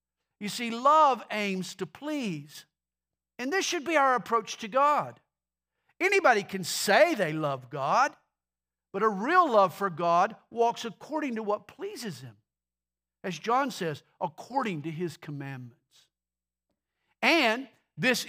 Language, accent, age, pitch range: English, American, 50-69, 145-240 Hz